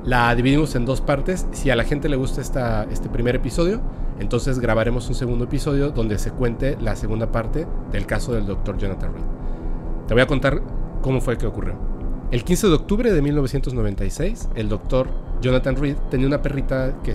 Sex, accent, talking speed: male, Mexican, 190 wpm